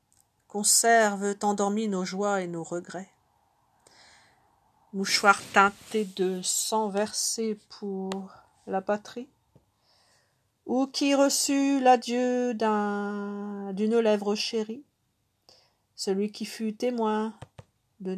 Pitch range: 185-225 Hz